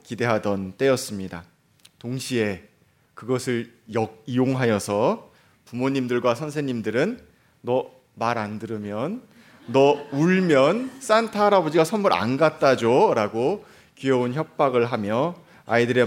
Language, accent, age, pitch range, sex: Korean, native, 30-49, 110-150 Hz, male